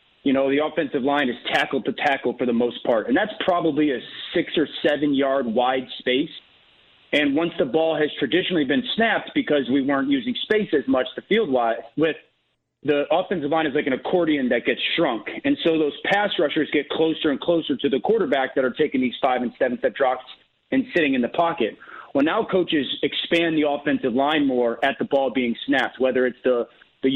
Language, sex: English, male